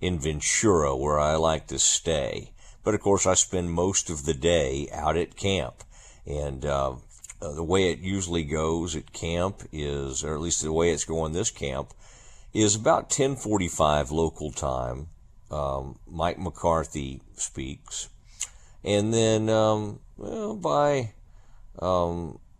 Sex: male